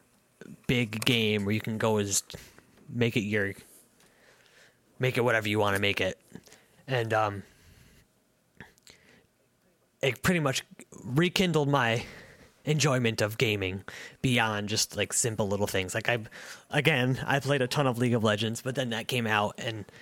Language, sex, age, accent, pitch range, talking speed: English, male, 20-39, American, 105-125 Hz, 155 wpm